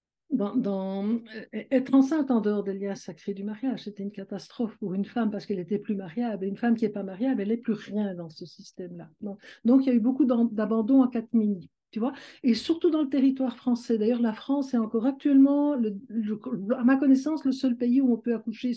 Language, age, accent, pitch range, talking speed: French, 60-79, French, 215-255 Hz, 225 wpm